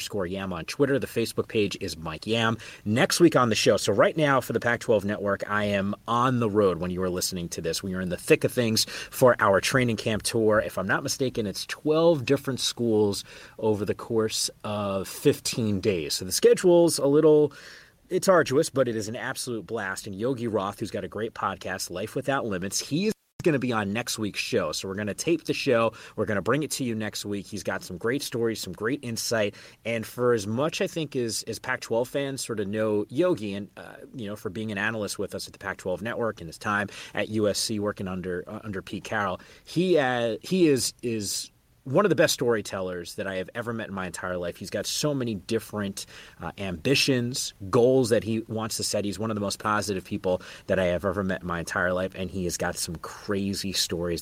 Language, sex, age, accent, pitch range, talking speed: English, male, 30-49, American, 95-125 Hz, 230 wpm